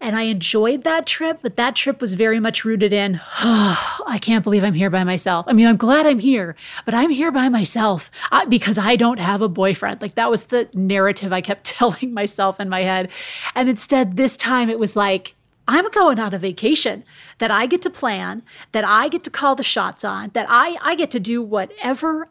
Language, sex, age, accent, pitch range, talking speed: English, female, 30-49, American, 195-240 Hz, 220 wpm